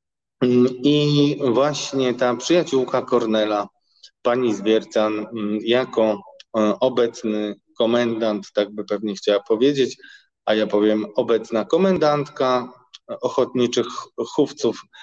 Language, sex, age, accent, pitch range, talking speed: Polish, male, 20-39, native, 110-155 Hz, 90 wpm